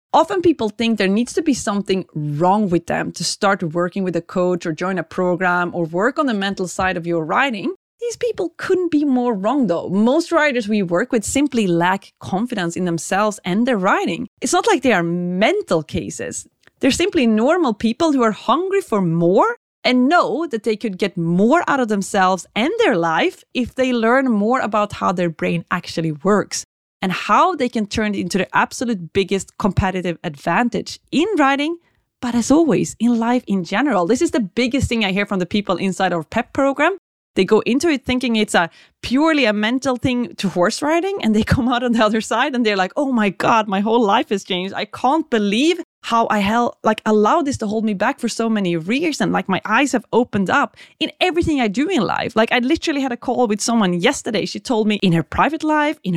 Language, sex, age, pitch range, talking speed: English, female, 30-49, 195-280 Hz, 220 wpm